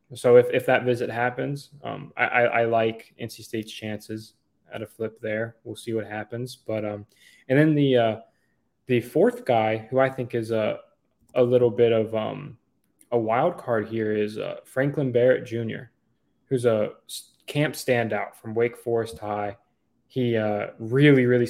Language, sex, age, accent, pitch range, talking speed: English, male, 20-39, American, 110-130 Hz, 170 wpm